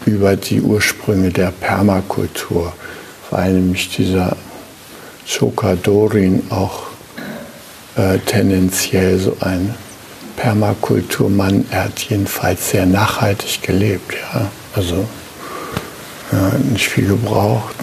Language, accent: German, German